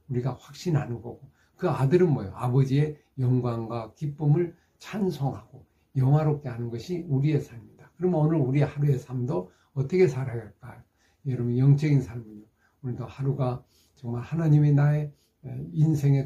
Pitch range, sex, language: 120-155 Hz, male, Korean